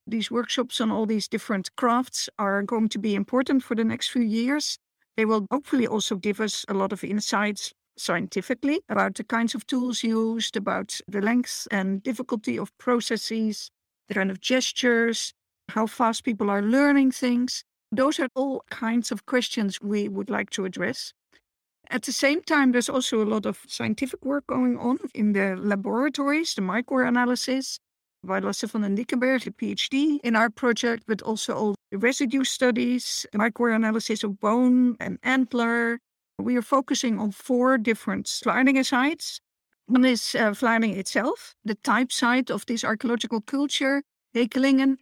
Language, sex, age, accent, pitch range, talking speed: English, female, 60-79, Dutch, 215-255 Hz, 165 wpm